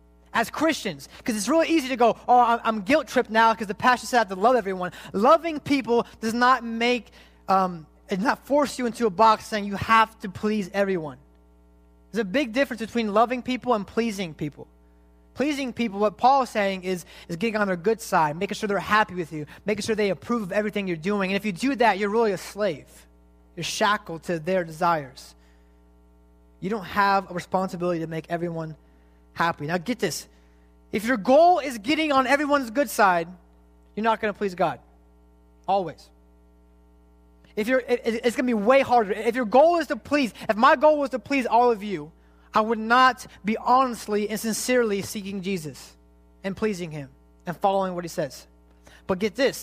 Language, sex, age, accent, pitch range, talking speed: English, male, 20-39, American, 155-240 Hz, 195 wpm